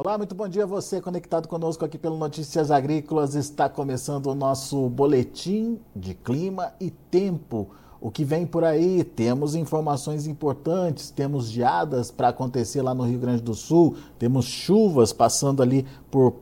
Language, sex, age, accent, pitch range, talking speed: Portuguese, male, 50-69, Brazilian, 135-170 Hz, 160 wpm